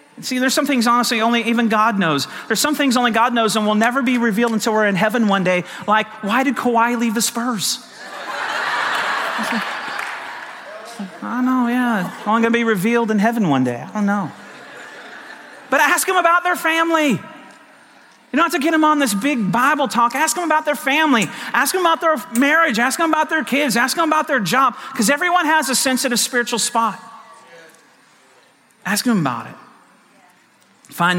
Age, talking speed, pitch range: 40-59, 185 wpm, 200-255 Hz